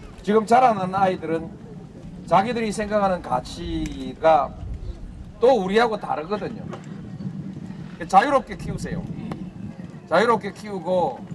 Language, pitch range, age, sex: Korean, 170-235 Hz, 40-59, male